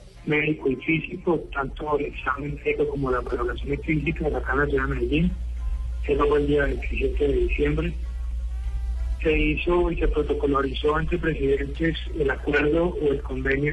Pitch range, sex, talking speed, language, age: 125-175 Hz, male, 160 wpm, Spanish, 40-59